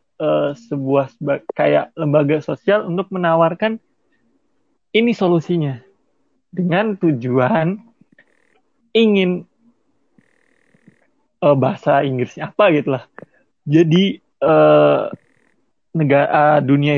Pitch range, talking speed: 140-185 Hz, 80 wpm